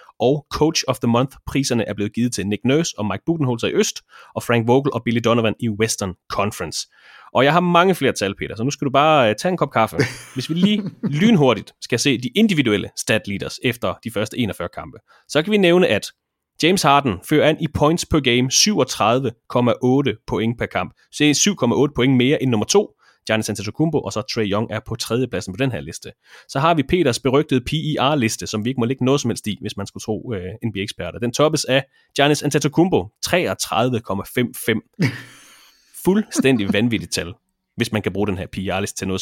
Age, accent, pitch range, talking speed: 30-49, Danish, 110-150 Hz, 210 wpm